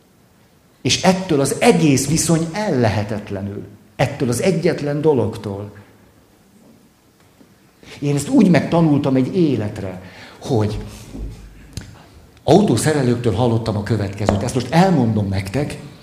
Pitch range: 100-140 Hz